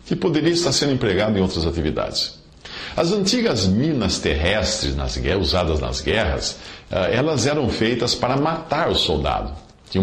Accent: Brazilian